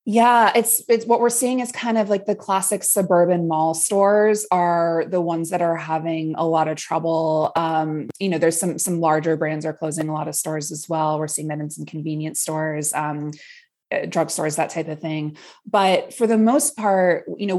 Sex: female